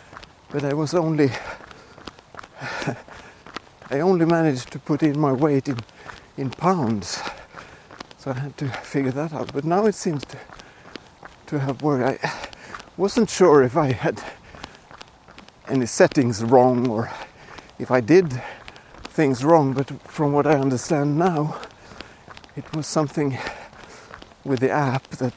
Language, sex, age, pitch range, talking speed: English, male, 60-79, 125-155 Hz, 135 wpm